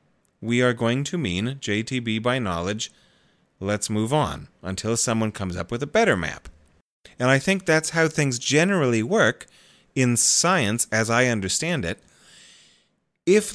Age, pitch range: 30-49, 105-135 Hz